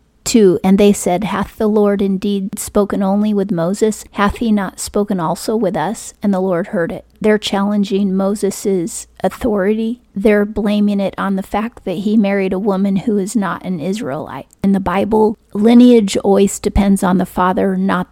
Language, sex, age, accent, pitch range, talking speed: English, female, 30-49, American, 195-215 Hz, 180 wpm